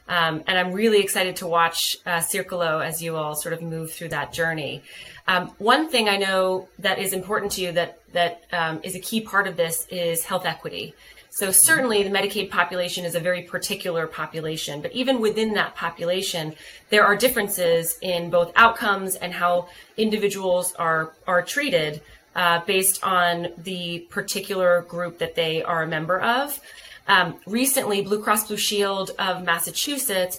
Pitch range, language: 170-200 Hz, English